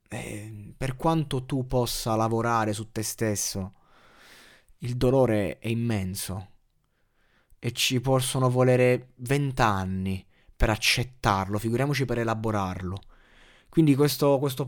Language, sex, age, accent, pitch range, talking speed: Italian, male, 20-39, native, 105-130 Hz, 105 wpm